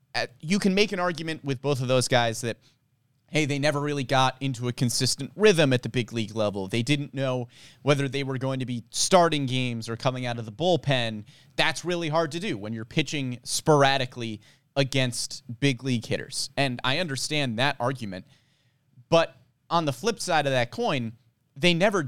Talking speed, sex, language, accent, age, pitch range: 190 wpm, male, English, American, 30-49, 125-150 Hz